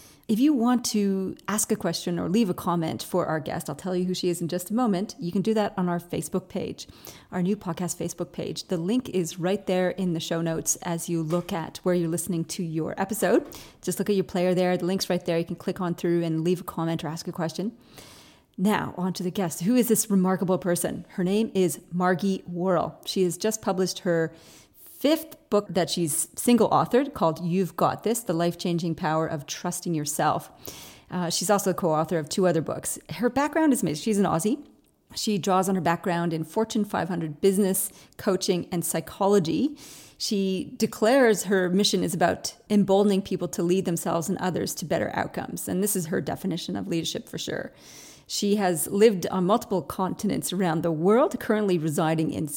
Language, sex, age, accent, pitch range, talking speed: English, female, 30-49, American, 170-205 Hz, 205 wpm